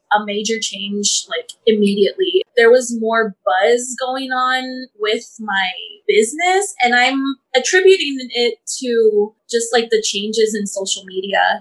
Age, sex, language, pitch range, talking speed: 20-39, female, English, 205-255 Hz, 135 wpm